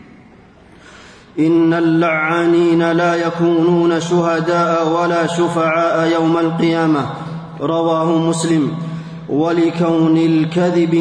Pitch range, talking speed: 165-175 Hz, 70 wpm